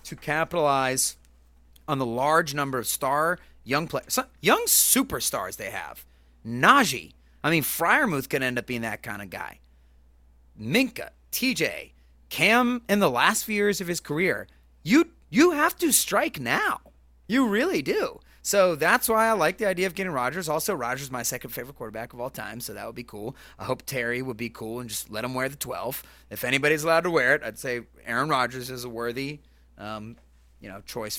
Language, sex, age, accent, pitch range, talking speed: English, male, 30-49, American, 110-170 Hz, 195 wpm